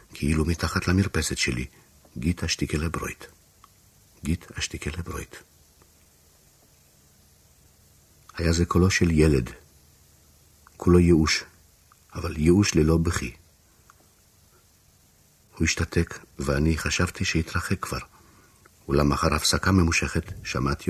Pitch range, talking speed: 75-95 Hz, 90 wpm